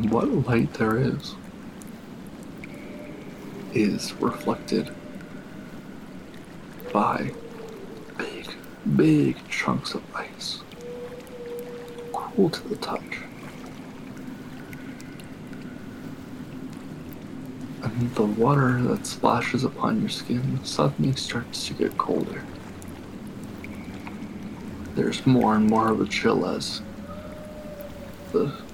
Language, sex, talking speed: English, male, 80 wpm